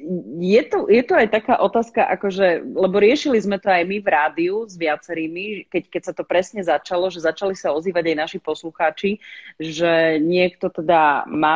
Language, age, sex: Slovak, 30-49, female